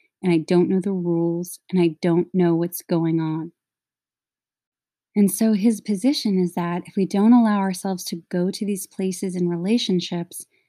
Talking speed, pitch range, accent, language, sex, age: 175 wpm, 175-220 Hz, American, English, female, 20-39